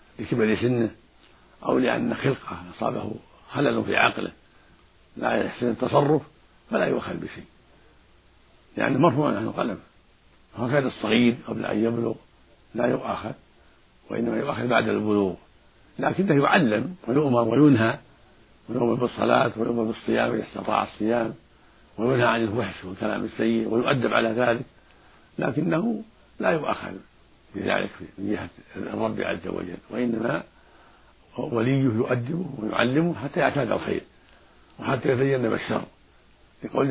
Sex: male